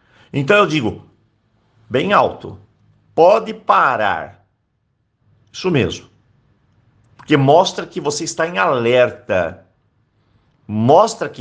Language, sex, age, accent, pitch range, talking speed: Portuguese, male, 50-69, Brazilian, 105-145 Hz, 95 wpm